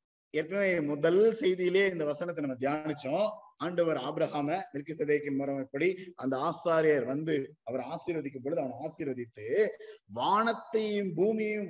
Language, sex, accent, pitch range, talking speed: Tamil, male, native, 155-225 Hz, 110 wpm